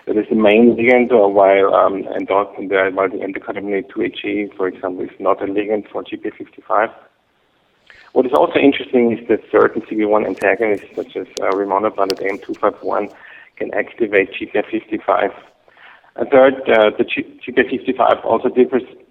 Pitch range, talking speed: 100-125 Hz, 145 wpm